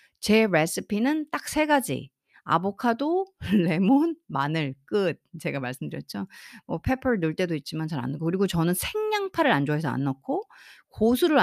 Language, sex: Korean, female